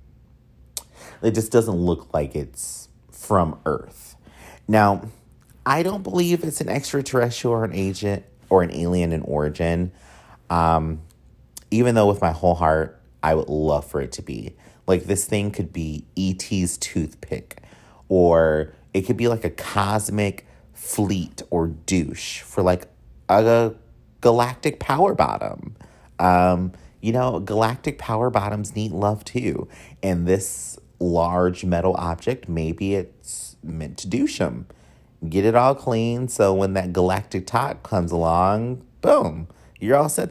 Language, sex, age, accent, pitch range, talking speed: English, male, 30-49, American, 80-110 Hz, 145 wpm